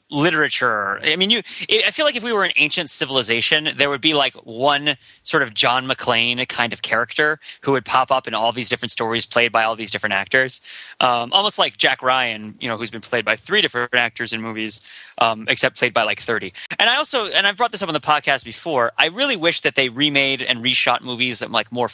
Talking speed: 235 wpm